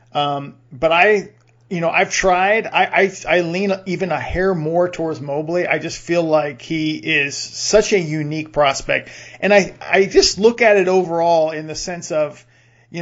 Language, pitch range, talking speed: English, 145-175 Hz, 185 wpm